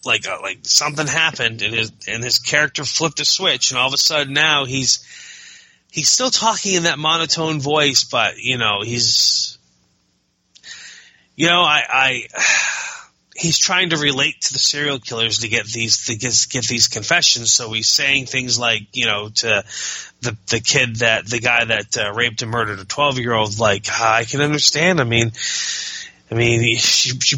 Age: 20-39